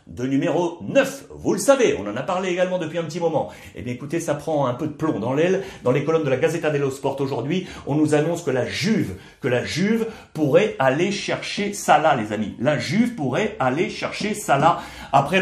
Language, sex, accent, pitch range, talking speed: French, male, French, 135-195 Hz, 220 wpm